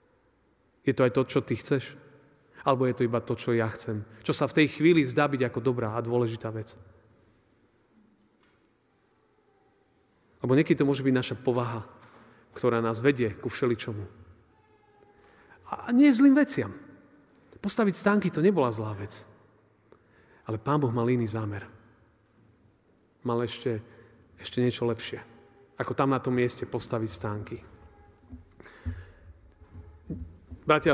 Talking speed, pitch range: 135 wpm, 110-140 Hz